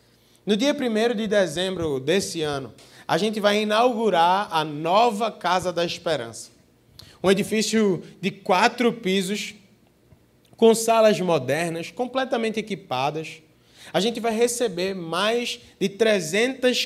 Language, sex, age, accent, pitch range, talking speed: Portuguese, male, 20-39, Brazilian, 170-230 Hz, 115 wpm